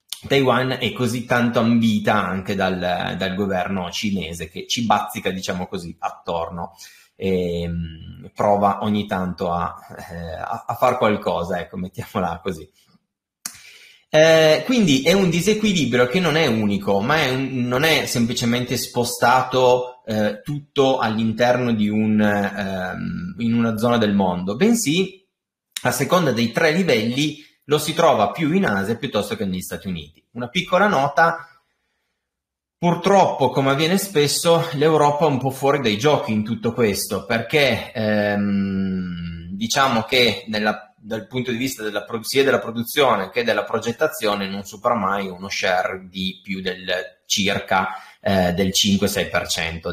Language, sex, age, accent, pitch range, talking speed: Italian, male, 30-49, native, 100-140 Hz, 140 wpm